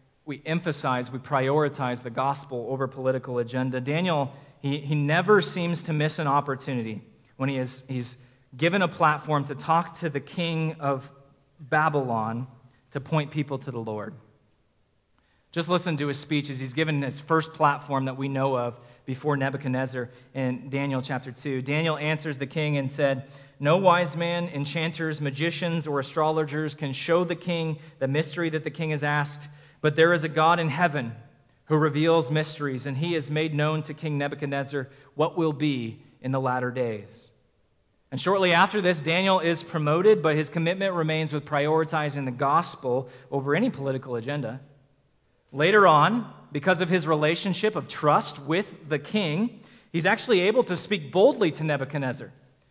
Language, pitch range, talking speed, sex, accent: English, 135-165 Hz, 165 wpm, male, American